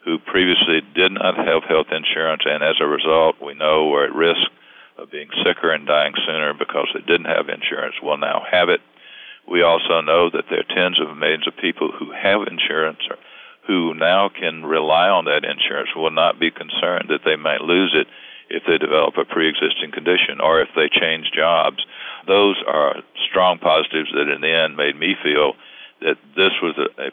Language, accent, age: English, American, 60-79